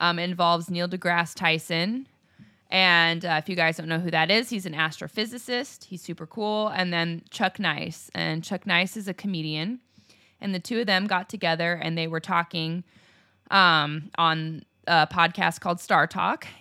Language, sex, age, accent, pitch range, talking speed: English, female, 20-39, American, 160-185 Hz, 175 wpm